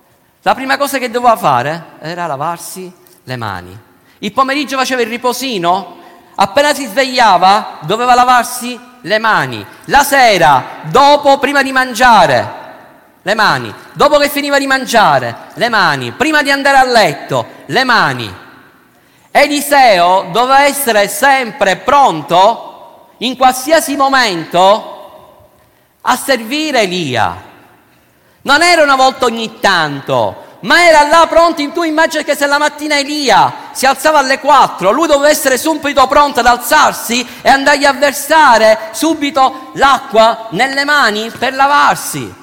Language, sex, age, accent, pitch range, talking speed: Italian, male, 50-69, native, 225-290 Hz, 135 wpm